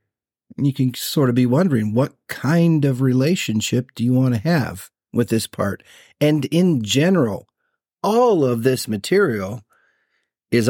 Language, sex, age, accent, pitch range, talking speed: English, male, 40-59, American, 115-140 Hz, 145 wpm